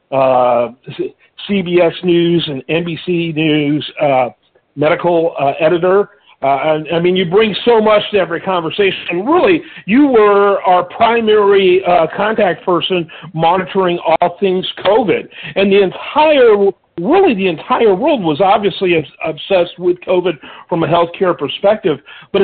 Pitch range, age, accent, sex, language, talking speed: 170-220 Hz, 50-69, American, male, English, 135 wpm